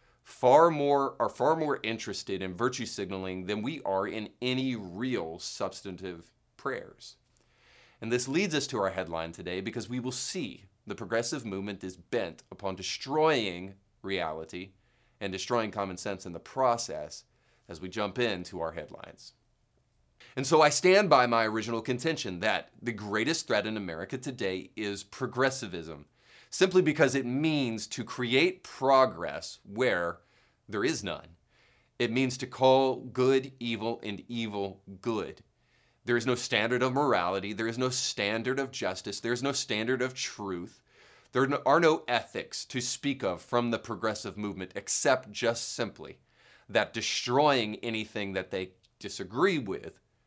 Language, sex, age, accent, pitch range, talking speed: English, male, 30-49, American, 95-130 Hz, 150 wpm